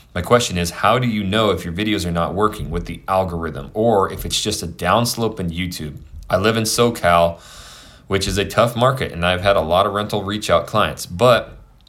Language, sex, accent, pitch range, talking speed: English, male, American, 85-110 Hz, 215 wpm